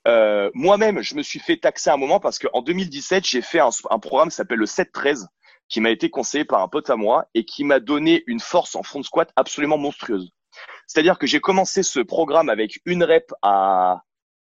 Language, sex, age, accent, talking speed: French, male, 30-49, French, 210 wpm